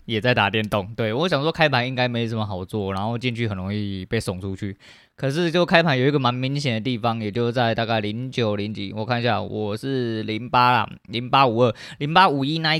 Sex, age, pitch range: male, 20-39, 105-125 Hz